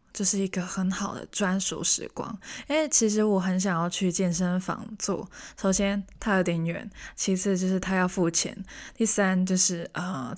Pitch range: 175-205 Hz